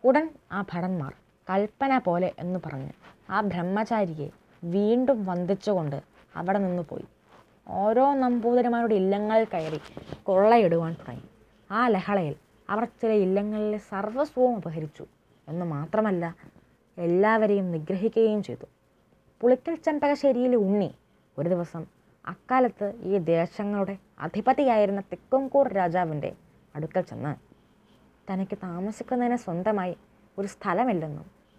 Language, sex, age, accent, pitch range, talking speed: Malayalam, female, 20-39, native, 175-230 Hz, 95 wpm